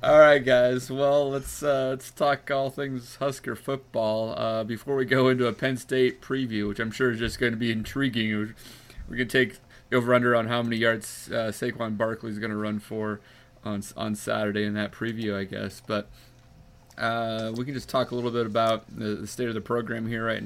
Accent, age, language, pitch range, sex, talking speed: American, 30-49, English, 110-130 Hz, male, 210 wpm